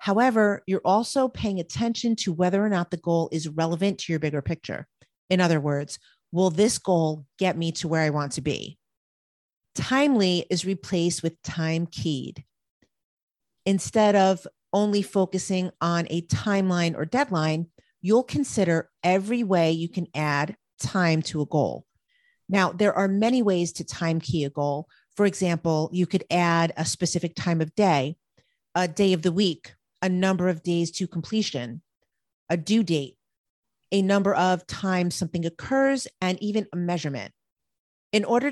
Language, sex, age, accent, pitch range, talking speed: English, female, 40-59, American, 165-205 Hz, 160 wpm